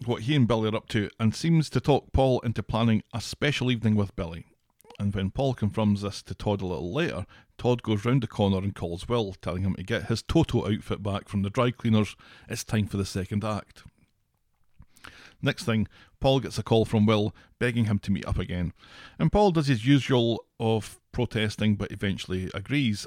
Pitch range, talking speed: 100-120 Hz, 205 wpm